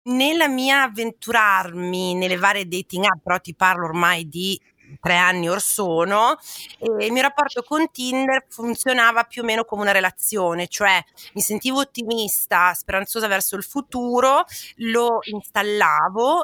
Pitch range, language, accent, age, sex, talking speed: 185-240 Hz, Italian, native, 30-49, female, 140 wpm